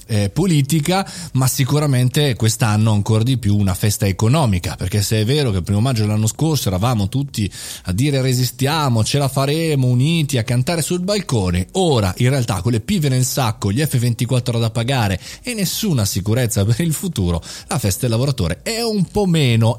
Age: 30-49